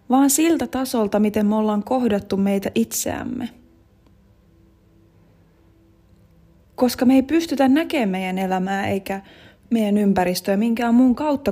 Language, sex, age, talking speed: Finnish, female, 20-39, 115 wpm